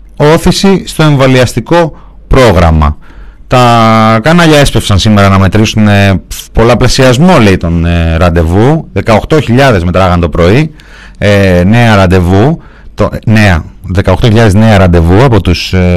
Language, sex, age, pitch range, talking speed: Greek, male, 30-49, 90-120 Hz, 95 wpm